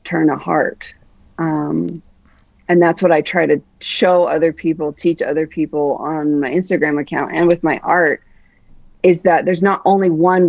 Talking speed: 170 wpm